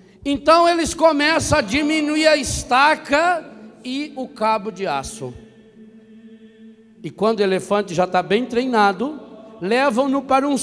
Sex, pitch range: male, 210-300 Hz